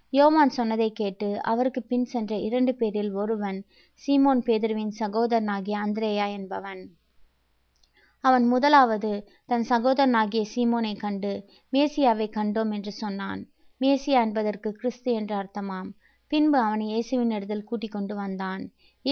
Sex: female